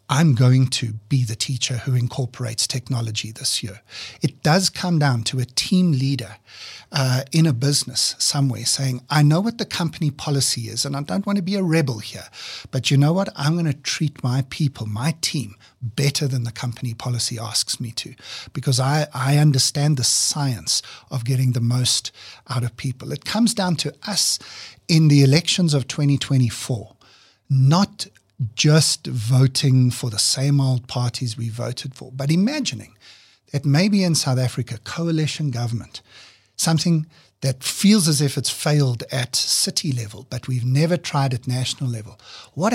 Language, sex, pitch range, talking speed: English, male, 120-150 Hz, 170 wpm